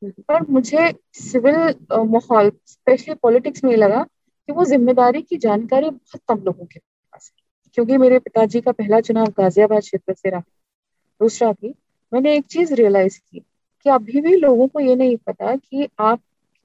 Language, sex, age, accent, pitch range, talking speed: Hindi, female, 30-49, native, 210-280 Hz, 160 wpm